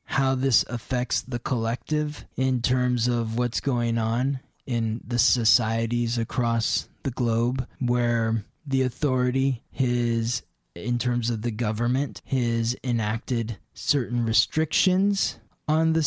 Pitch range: 115-145 Hz